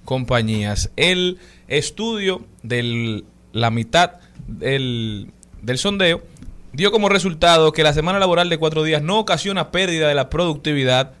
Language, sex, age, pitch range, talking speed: Spanish, male, 20-39, 125-160 Hz, 135 wpm